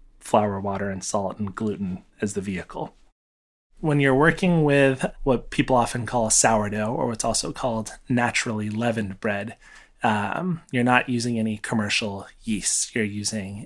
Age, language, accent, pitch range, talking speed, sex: 30-49, English, American, 105-120 Hz, 155 wpm, male